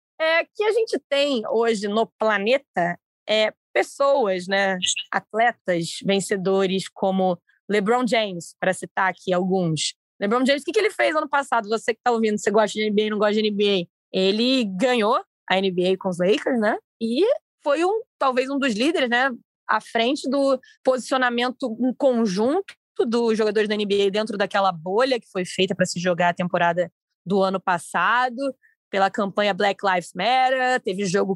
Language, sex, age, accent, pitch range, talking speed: Portuguese, female, 20-39, Brazilian, 200-265 Hz, 170 wpm